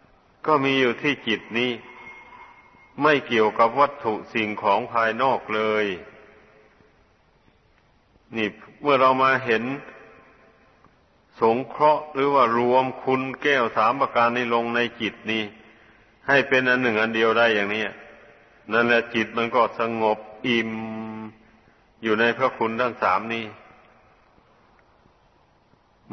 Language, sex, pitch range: Thai, male, 110-130 Hz